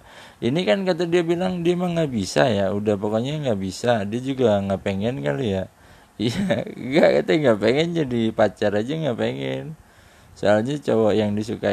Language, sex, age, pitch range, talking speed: Indonesian, male, 20-39, 100-130 Hz, 175 wpm